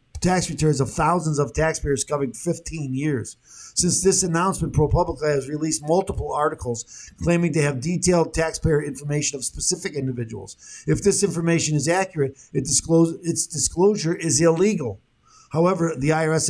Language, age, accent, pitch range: English, 50-69, American, 140-170 Hz